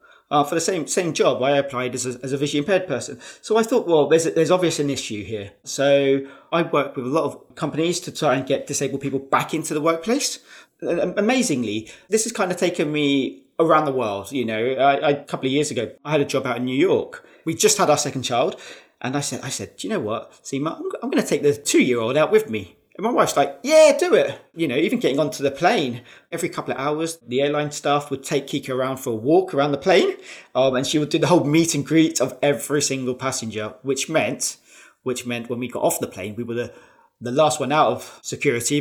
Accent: British